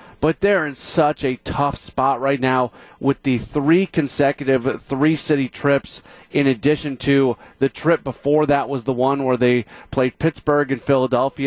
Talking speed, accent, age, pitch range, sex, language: 160 wpm, American, 40-59, 120-145 Hz, male, English